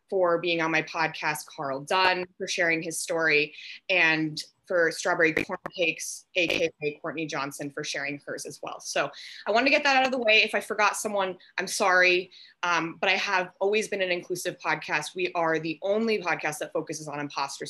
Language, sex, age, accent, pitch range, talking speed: English, female, 20-39, American, 160-195 Hz, 195 wpm